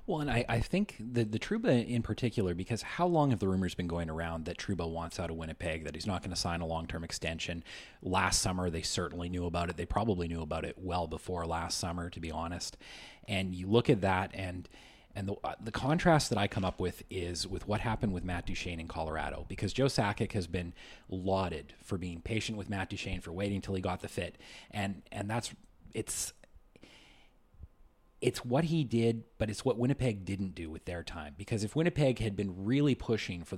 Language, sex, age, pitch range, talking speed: English, male, 30-49, 85-110 Hz, 215 wpm